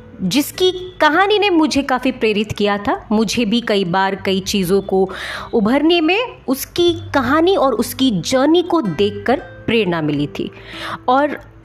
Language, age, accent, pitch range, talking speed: Hindi, 30-49, native, 205-330 Hz, 145 wpm